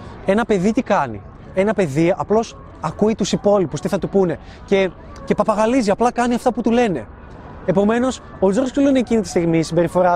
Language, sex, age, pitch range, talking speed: Greek, male, 20-39, 165-225 Hz, 195 wpm